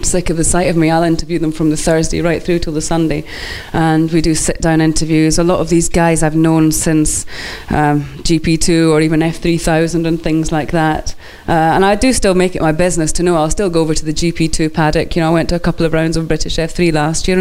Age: 20-39